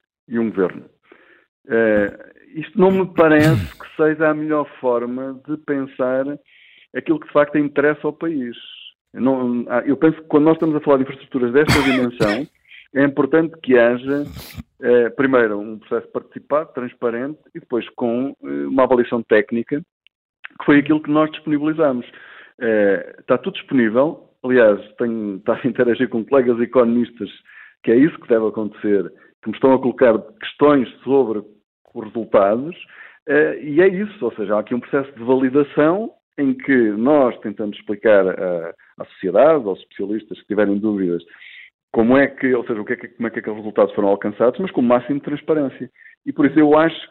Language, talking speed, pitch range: Portuguese, 175 wpm, 115-150 Hz